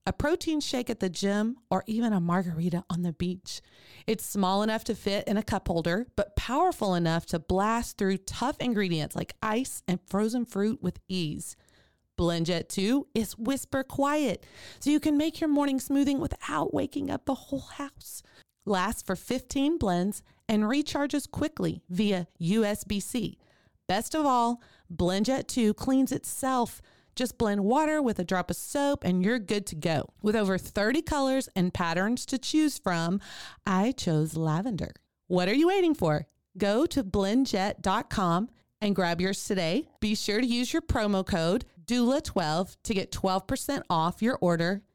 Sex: female